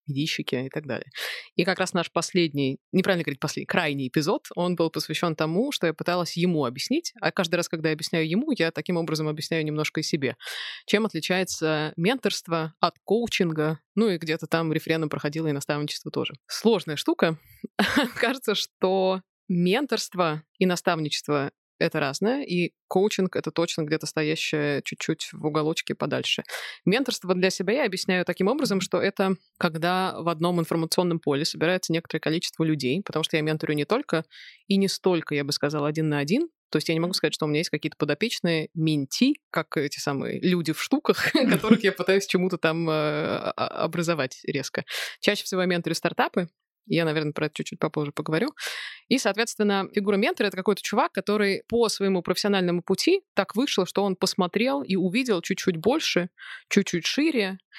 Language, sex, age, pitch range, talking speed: Russian, female, 20-39, 155-195 Hz, 170 wpm